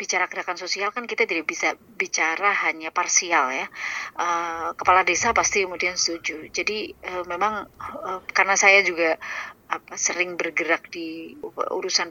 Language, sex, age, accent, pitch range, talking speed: Indonesian, female, 30-49, native, 170-205 Hz, 130 wpm